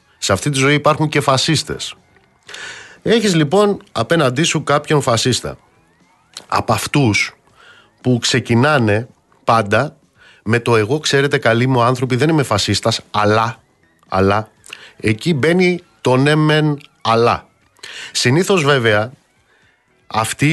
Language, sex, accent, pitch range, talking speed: Greek, male, native, 110-155 Hz, 115 wpm